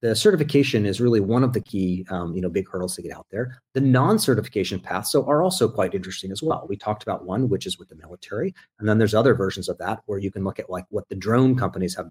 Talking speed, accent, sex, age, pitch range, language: 270 wpm, American, male, 40-59, 95-130 Hz, English